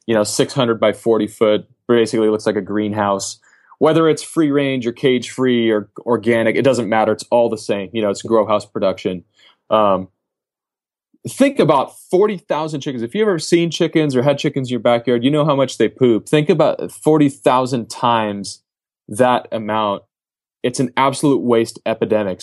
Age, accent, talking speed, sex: 20-39, American, 175 wpm, male